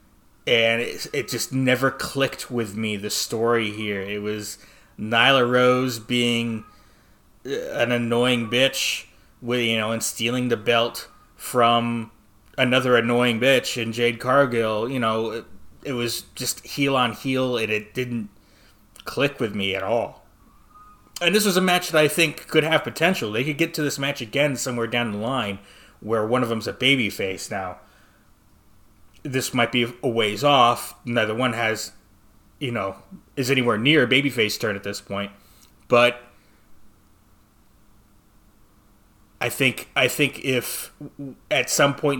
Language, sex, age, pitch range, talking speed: English, male, 30-49, 105-130 Hz, 155 wpm